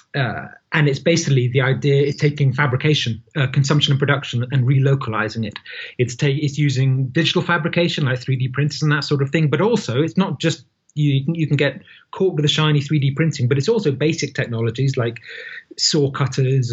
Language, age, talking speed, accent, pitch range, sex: English, 30-49, 190 wpm, British, 130-150 Hz, male